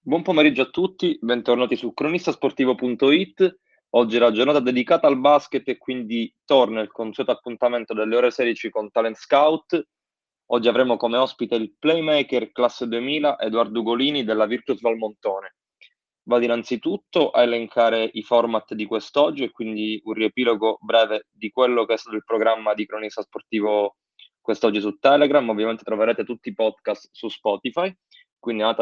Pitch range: 110-130 Hz